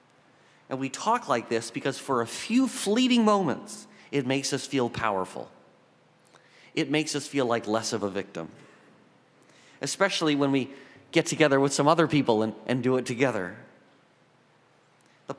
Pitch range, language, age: 110-140 Hz, English, 40-59